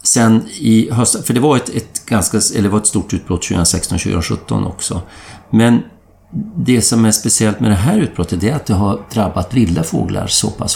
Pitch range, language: 85-110 Hz, Swedish